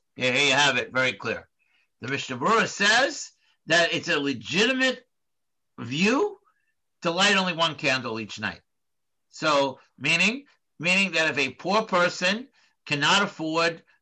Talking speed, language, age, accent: 140 wpm, English, 50-69, American